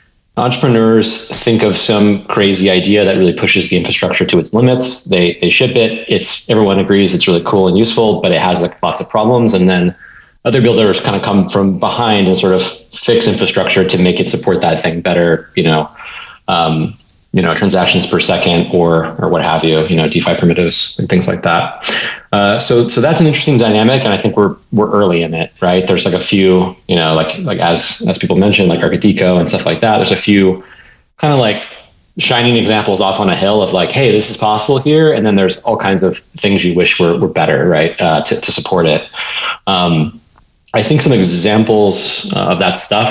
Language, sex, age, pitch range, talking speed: English, male, 30-49, 95-115 Hz, 215 wpm